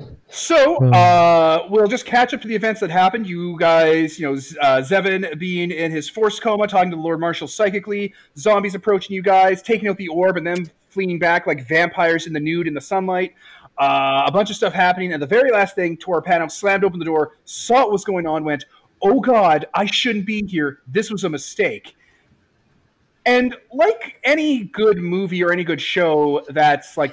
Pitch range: 145-195 Hz